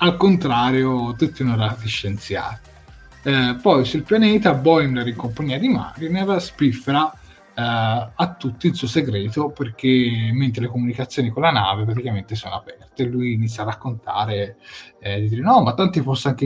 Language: Italian